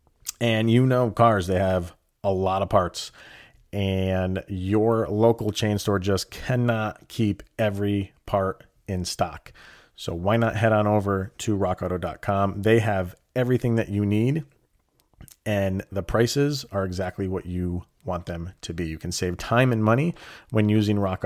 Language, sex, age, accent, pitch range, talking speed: English, male, 30-49, American, 100-125 Hz, 160 wpm